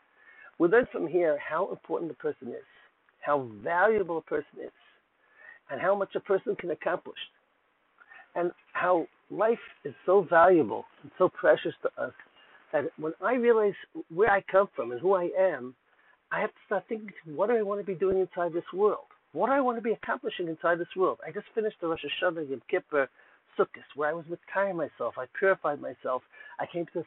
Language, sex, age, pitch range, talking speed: English, male, 60-79, 170-220 Hz, 205 wpm